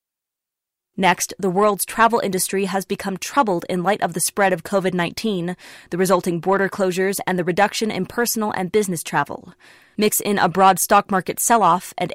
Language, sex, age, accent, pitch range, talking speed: English, female, 20-39, American, 185-220 Hz, 175 wpm